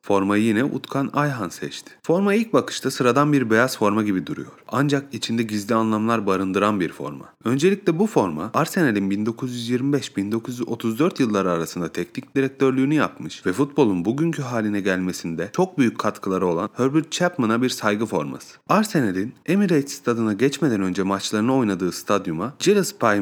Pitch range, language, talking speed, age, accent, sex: 100-140 Hz, Turkish, 140 wpm, 30-49, native, male